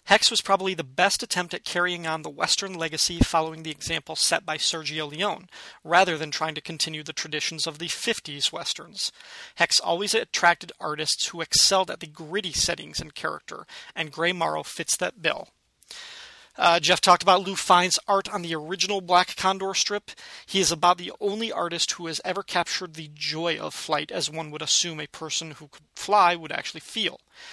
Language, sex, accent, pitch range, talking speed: English, male, American, 160-190 Hz, 190 wpm